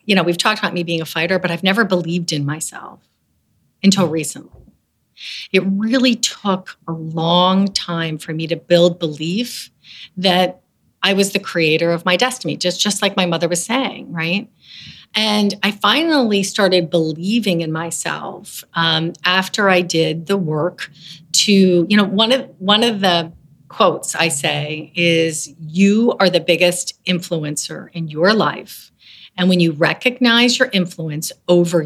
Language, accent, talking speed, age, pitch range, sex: English, American, 155 wpm, 40-59, 165-200 Hz, female